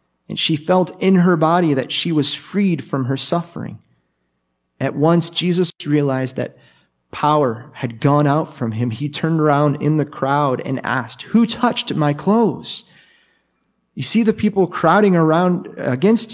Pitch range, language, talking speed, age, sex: 125-165 Hz, English, 160 wpm, 30-49, male